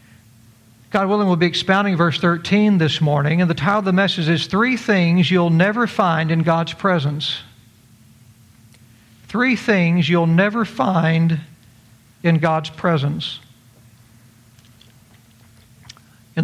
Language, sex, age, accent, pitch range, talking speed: English, male, 60-79, American, 135-170 Hz, 120 wpm